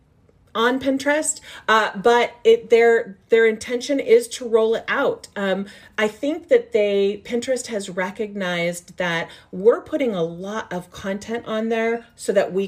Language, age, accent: English, 40-59, American